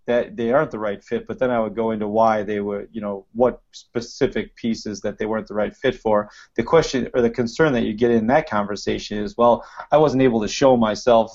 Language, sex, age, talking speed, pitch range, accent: English, male, 30-49, 245 wpm, 105-125 Hz, American